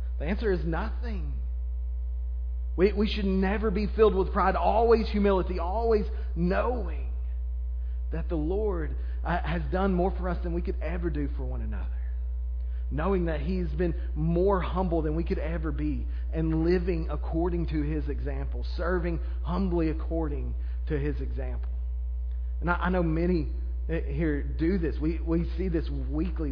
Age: 30-49